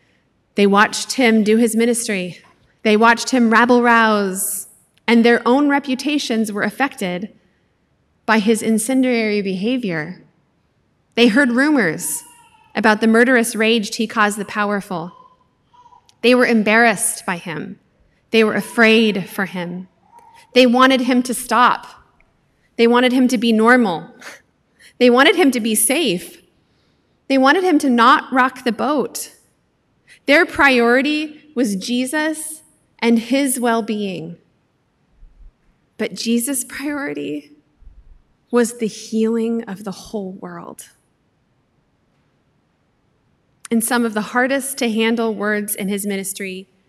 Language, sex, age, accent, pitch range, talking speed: English, female, 30-49, American, 200-250 Hz, 120 wpm